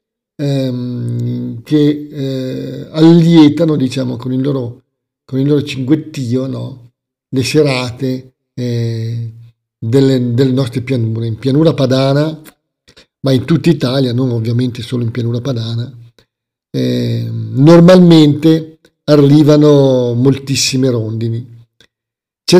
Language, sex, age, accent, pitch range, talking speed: Italian, male, 50-69, native, 130-160 Hz, 100 wpm